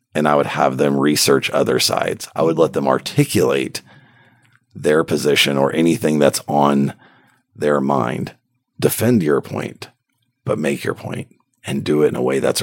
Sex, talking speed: male, 165 wpm